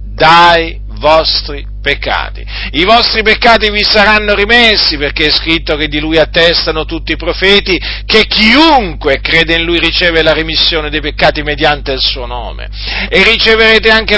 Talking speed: 150 wpm